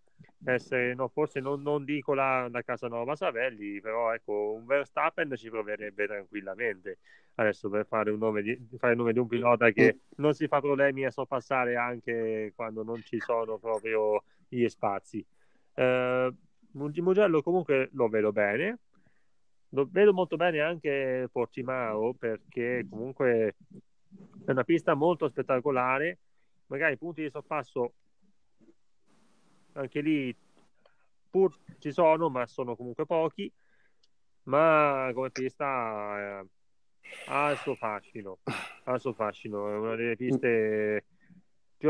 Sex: male